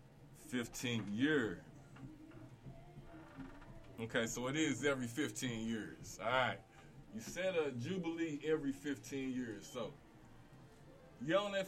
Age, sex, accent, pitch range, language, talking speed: 20-39, male, American, 115-150 Hz, English, 110 wpm